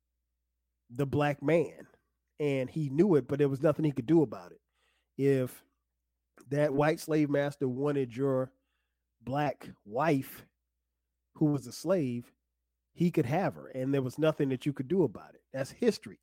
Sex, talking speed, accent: male, 165 wpm, American